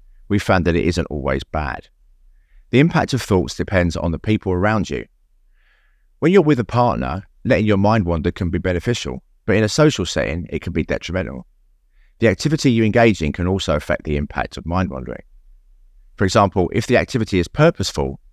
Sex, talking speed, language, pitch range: male, 190 wpm, English, 80-105 Hz